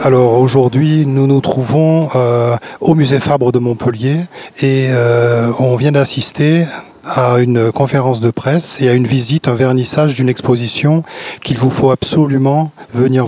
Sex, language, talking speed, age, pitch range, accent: male, French, 155 wpm, 40-59, 125-145 Hz, French